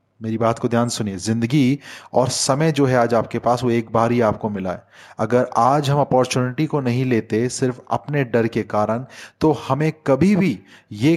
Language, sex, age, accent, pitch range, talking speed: English, male, 30-49, Indian, 115-140 Hz, 205 wpm